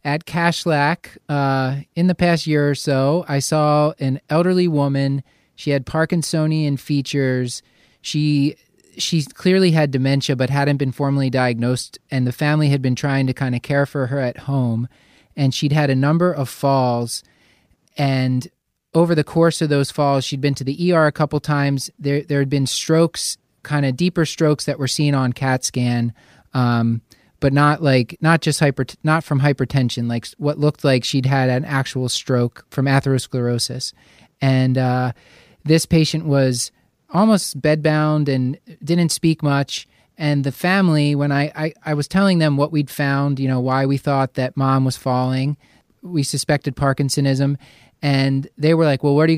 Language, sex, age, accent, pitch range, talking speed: English, male, 30-49, American, 130-150 Hz, 175 wpm